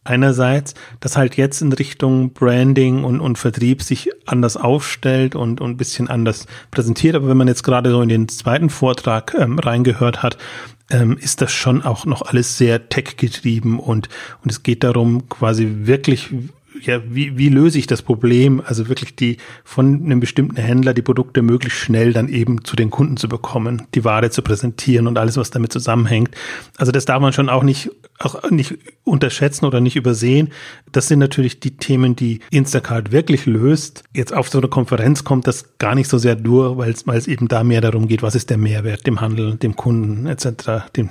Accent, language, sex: German, German, male